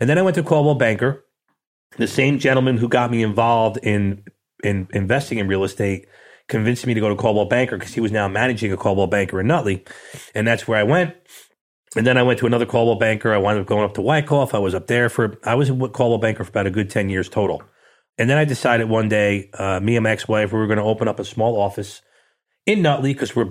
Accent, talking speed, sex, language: American, 255 wpm, male, English